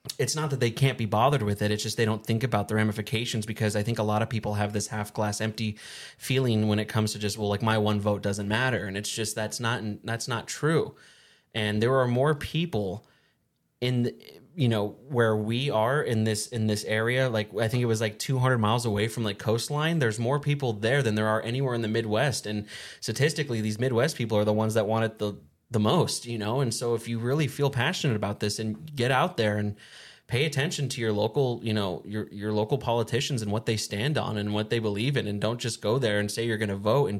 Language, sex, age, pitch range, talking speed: English, male, 20-39, 105-120 Hz, 245 wpm